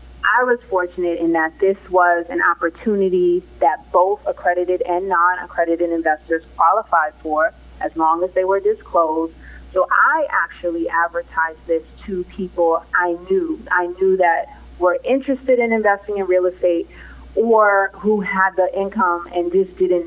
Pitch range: 165-195 Hz